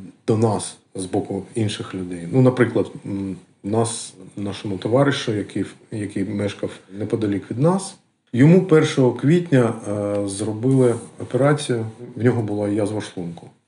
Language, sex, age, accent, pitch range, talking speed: Ukrainian, male, 40-59, native, 105-130 Hz, 125 wpm